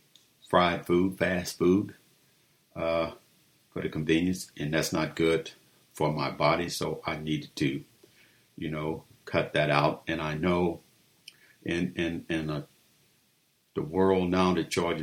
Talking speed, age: 145 wpm, 50-69